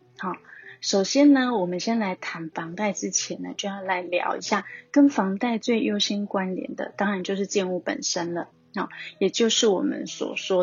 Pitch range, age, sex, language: 180-225 Hz, 30-49, female, Chinese